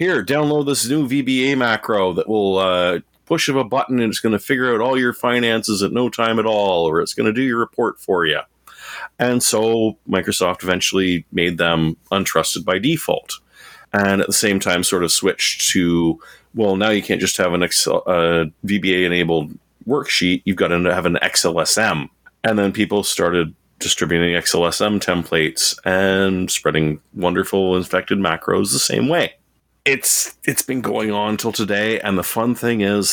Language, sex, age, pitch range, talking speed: English, male, 30-49, 90-115 Hz, 175 wpm